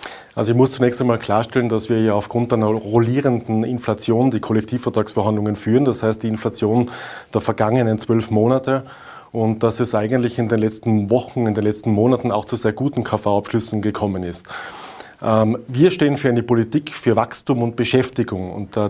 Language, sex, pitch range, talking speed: German, male, 110-130 Hz, 170 wpm